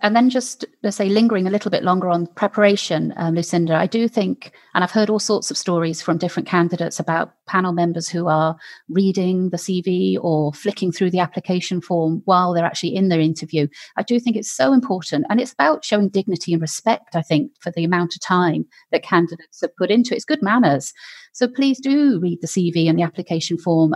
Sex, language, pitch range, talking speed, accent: female, English, 170-215 Hz, 215 wpm, British